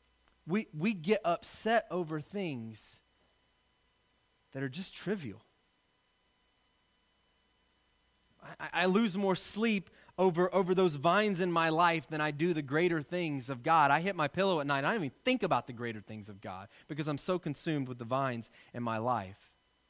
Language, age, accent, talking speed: English, 30-49, American, 170 wpm